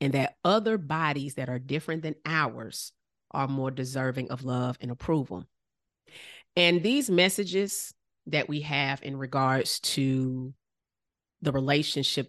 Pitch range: 135-155 Hz